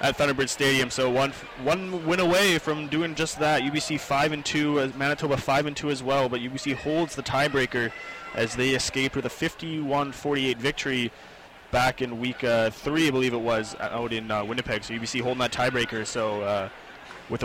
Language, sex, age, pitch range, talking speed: English, male, 20-39, 120-140 Hz, 195 wpm